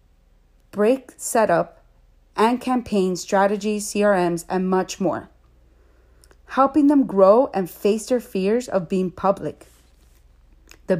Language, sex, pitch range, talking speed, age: English, female, 155-220 Hz, 110 wpm, 40-59